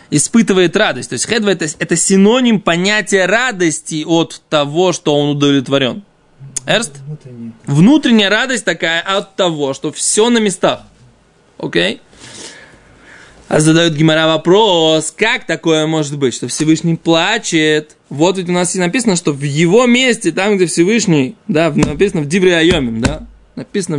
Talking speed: 135 wpm